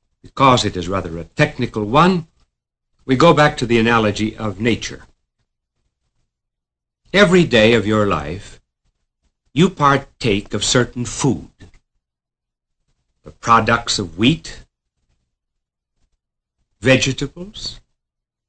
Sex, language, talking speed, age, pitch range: male, English, 95 wpm, 60-79, 100-145 Hz